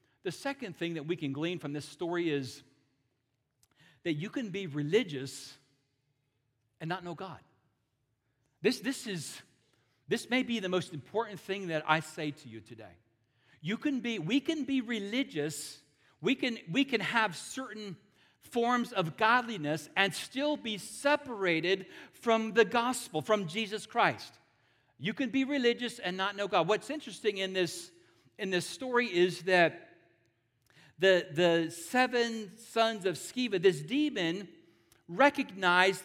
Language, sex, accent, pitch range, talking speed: English, male, American, 150-230 Hz, 145 wpm